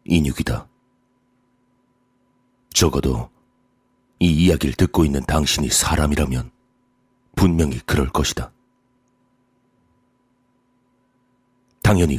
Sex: male